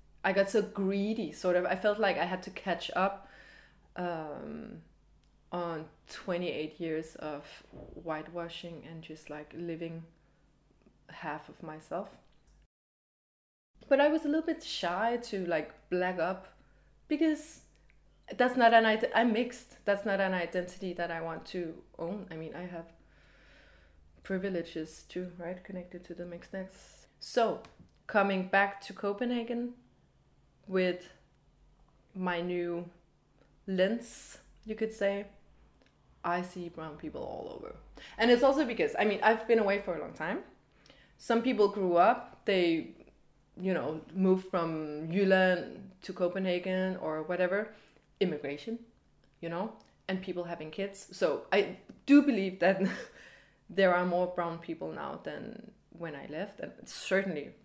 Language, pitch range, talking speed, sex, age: English, 165-200 Hz, 140 wpm, female, 20-39